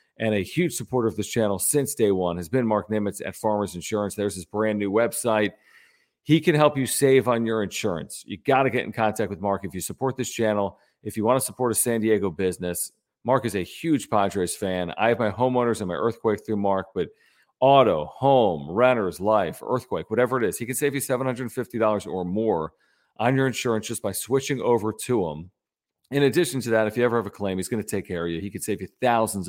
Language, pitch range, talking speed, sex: English, 100-125 Hz, 230 wpm, male